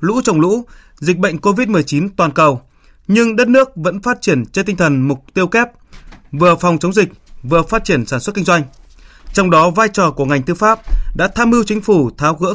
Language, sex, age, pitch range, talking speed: Vietnamese, male, 20-39, 150-210 Hz, 220 wpm